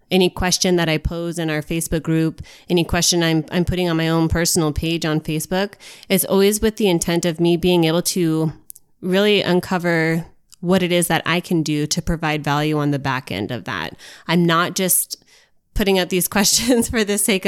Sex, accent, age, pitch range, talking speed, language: female, American, 20-39, 160-190 Hz, 205 wpm, English